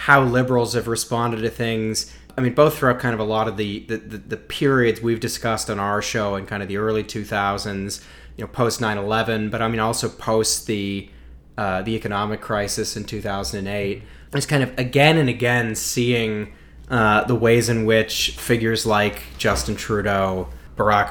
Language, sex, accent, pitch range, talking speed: English, male, American, 100-120 Hz, 180 wpm